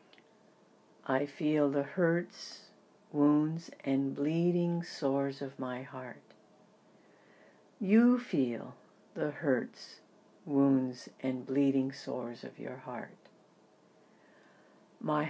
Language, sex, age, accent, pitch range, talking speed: English, female, 60-79, American, 135-175 Hz, 90 wpm